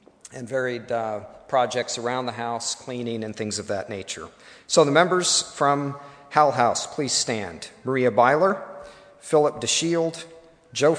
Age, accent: 50-69, American